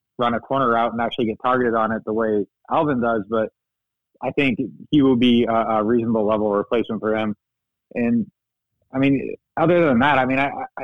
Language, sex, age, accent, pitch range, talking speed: English, male, 20-39, American, 110-130 Hz, 205 wpm